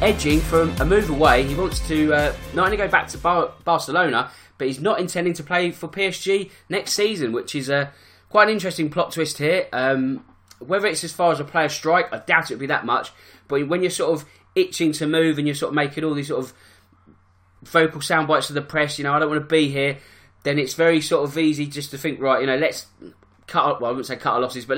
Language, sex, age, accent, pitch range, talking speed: English, male, 20-39, British, 130-165 Hz, 250 wpm